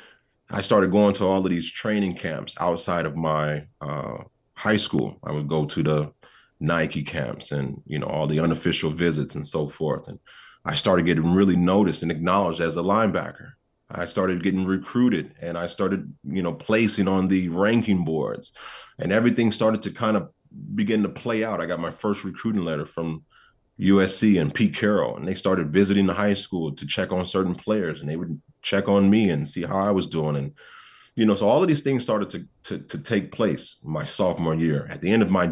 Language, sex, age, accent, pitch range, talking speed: English, male, 30-49, American, 80-100 Hz, 210 wpm